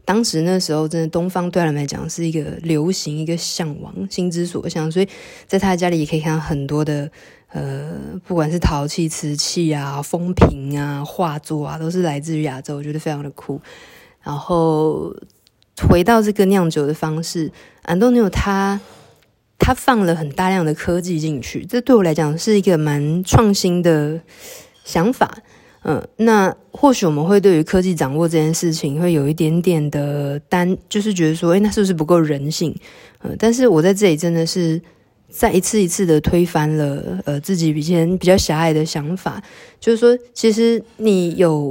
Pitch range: 155-185 Hz